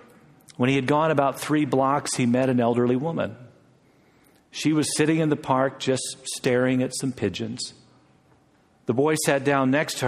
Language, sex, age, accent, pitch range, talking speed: English, male, 50-69, American, 115-145 Hz, 175 wpm